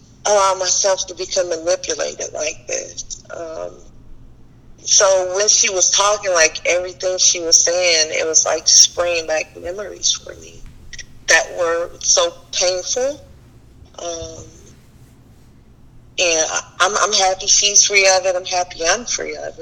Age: 40-59